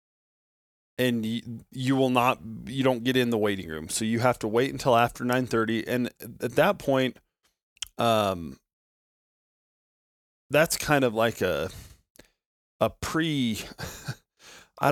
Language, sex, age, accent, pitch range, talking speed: English, male, 20-39, American, 105-125 Hz, 135 wpm